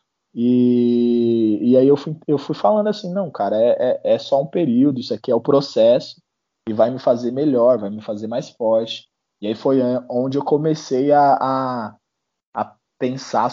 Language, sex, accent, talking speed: Portuguese, male, Brazilian, 190 wpm